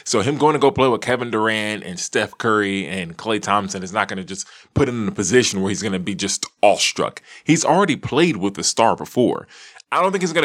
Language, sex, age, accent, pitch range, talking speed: English, male, 20-39, American, 105-150 Hz, 255 wpm